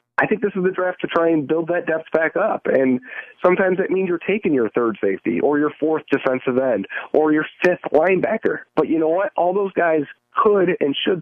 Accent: American